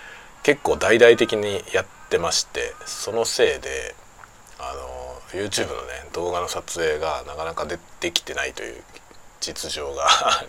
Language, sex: Japanese, male